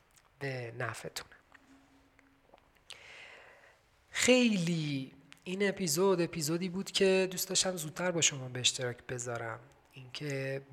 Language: Persian